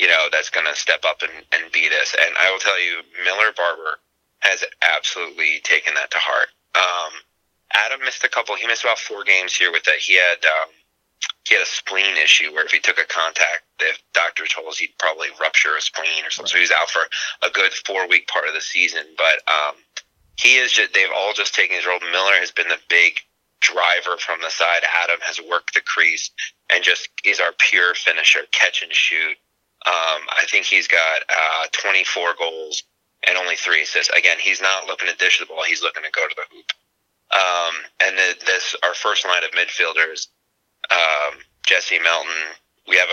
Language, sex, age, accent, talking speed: English, male, 30-49, American, 205 wpm